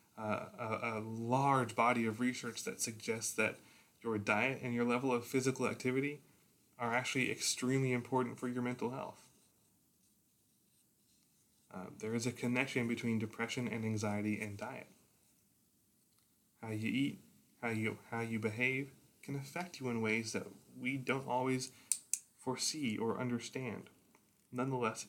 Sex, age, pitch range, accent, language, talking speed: male, 20-39, 110-135 Hz, American, English, 135 wpm